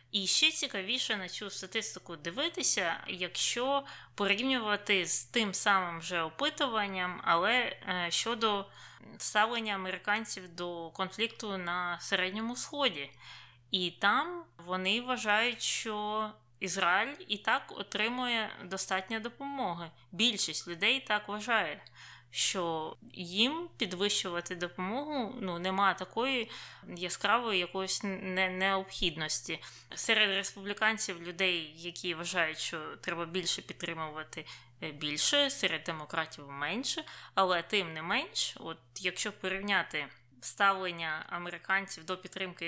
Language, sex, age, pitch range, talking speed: Ukrainian, female, 20-39, 175-215 Hz, 100 wpm